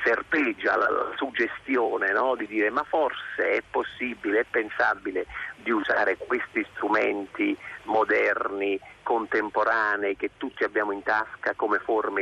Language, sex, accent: Italian, male, native